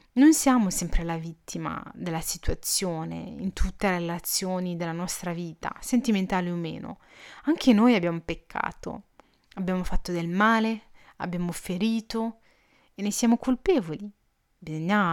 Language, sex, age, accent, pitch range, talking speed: Italian, female, 30-49, native, 170-220 Hz, 125 wpm